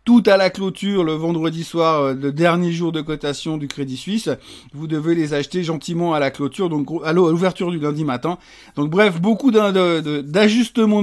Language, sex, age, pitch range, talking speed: French, male, 50-69, 145-190 Hz, 195 wpm